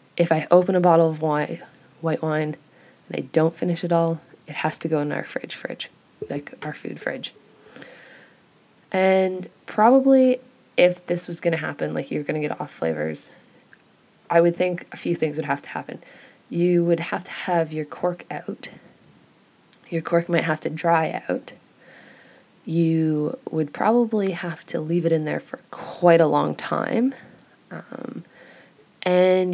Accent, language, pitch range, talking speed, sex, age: American, English, 155-185 Hz, 165 wpm, female, 20-39